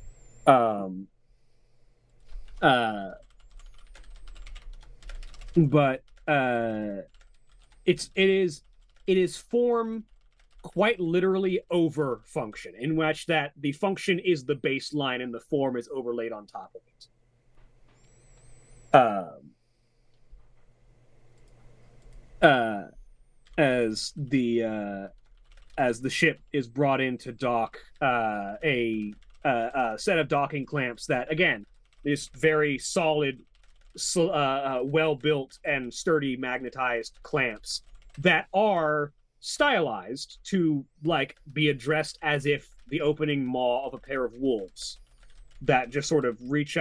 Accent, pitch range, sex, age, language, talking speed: American, 120-150 Hz, male, 30-49, English, 110 wpm